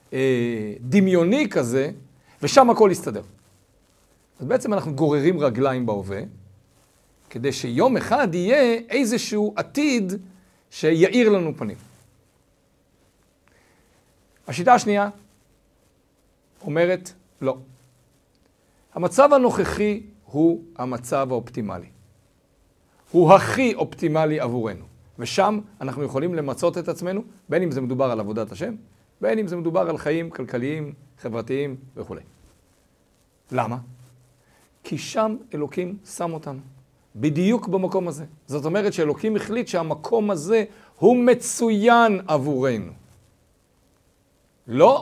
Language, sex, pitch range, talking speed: Hebrew, male, 125-200 Hz, 100 wpm